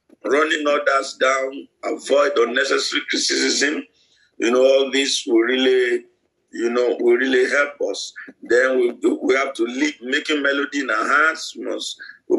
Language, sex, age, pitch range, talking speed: English, male, 50-69, 280-430 Hz, 165 wpm